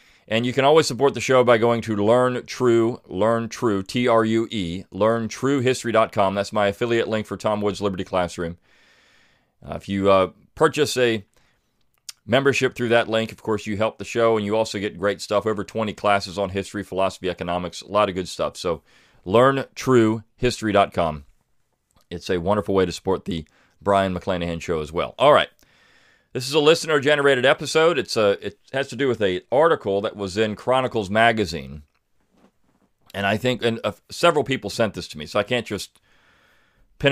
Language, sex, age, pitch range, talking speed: English, male, 40-59, 100-125 Hz, 180 wpm